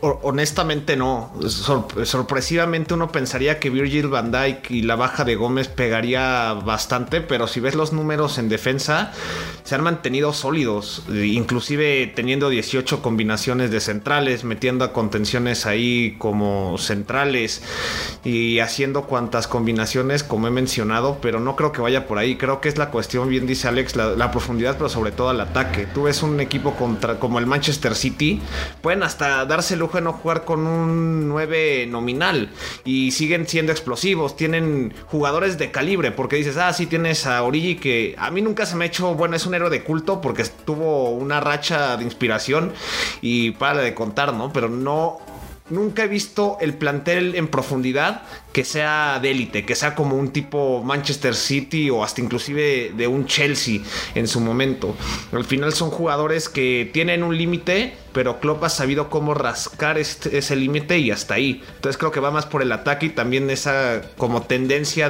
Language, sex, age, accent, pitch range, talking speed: Spanish, male, 30-49, Mexican, 120-155 Hz, 175 wpm